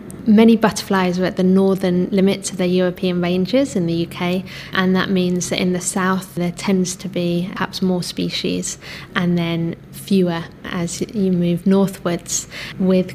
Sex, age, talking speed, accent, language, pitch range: female, 20-39, 165 wpm, British, English, 175-190 Hz